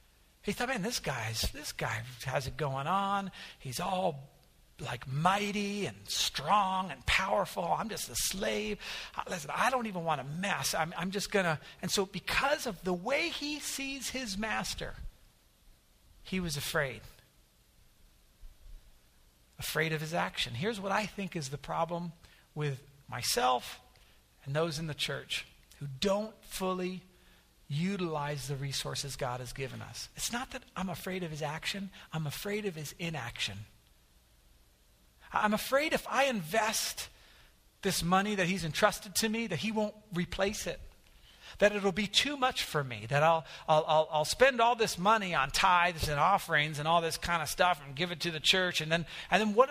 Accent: American